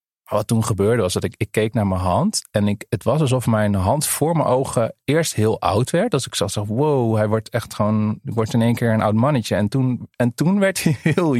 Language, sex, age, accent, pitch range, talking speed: English, male, 40-59, Dutch, 115-155 Hz, 250 wpm